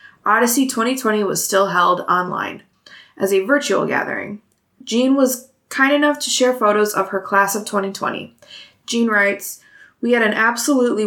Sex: female